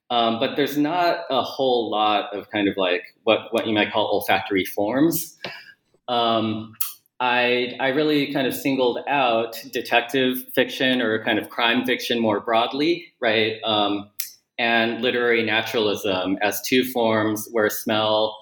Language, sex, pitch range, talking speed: English, male, 105-130 Hz, 145 wpm